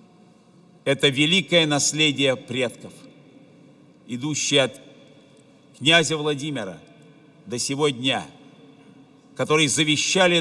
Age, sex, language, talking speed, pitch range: 50-69, male, Russian, 70 wpm, 140-175 Hz